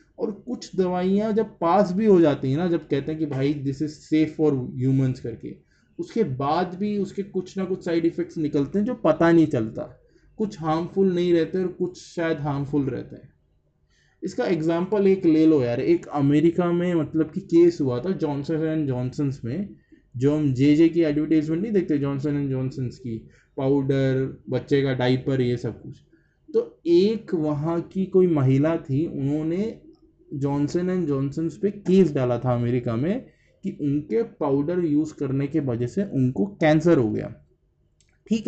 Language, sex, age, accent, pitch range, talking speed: Hindi, male, 20-39, native, 140-185 Hz, 175 wpm